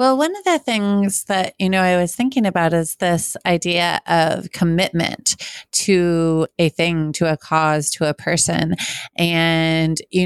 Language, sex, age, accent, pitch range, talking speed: English, female, 30-49, American, 160-185 Hz, 165 wpm